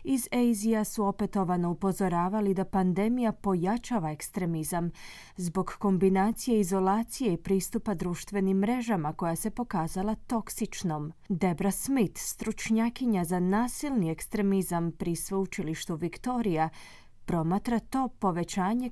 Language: Croatian